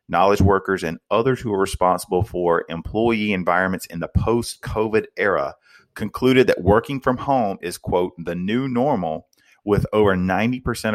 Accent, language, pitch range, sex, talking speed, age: American, English, 90-115 Hz, male, 155 wpm, 30-49